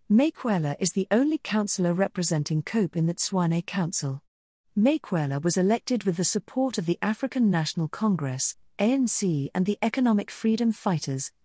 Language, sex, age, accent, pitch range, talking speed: English, female, 40-59, British, 160-220 Hz, 145 wpm